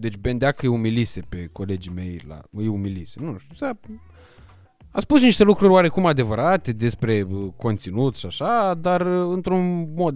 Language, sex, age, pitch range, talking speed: Romanian, male, 20-39, 105-165 Hz, 155 wpm